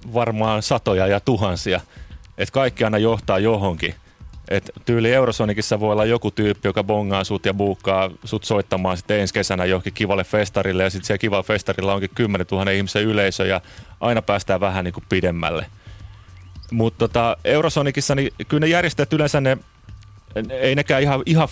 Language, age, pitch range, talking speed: Finnish, 30-49, 95-115 Hz, 165 wpm